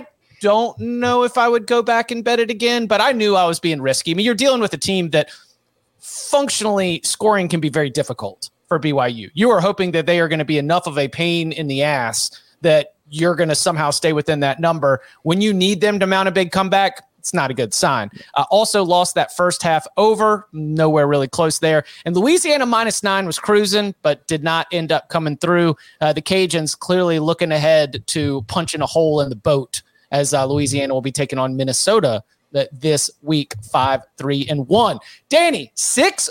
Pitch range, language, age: 150-210 Hz, English, 30-49